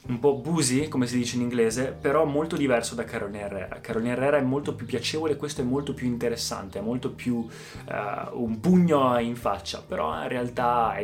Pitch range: 115-130 Hz